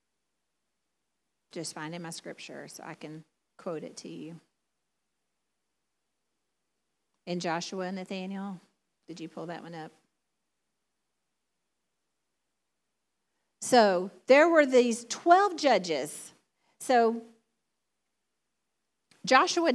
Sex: female